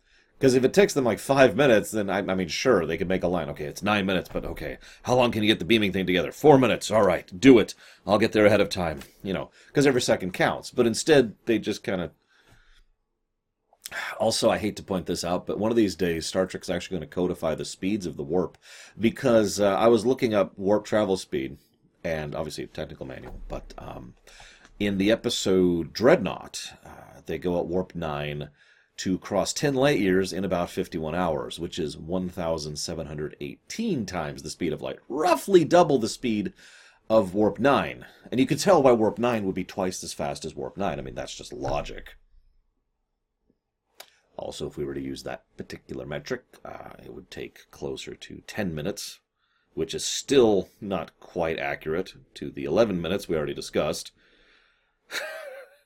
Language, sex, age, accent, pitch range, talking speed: English, male, 30-49, American, 85-115 Hz, 190 wpm